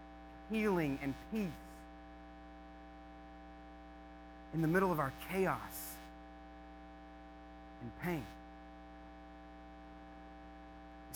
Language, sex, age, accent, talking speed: English, male, 40-59, American, 65 wpm